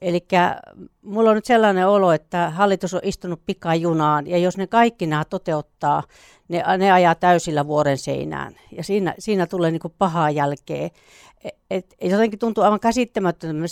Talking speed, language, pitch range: 155 wpm, Finnish, 165-215 Hz